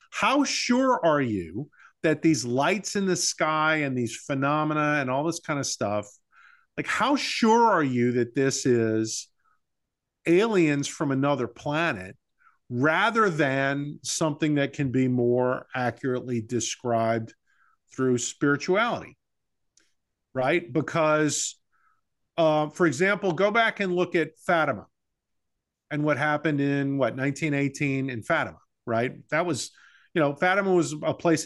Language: English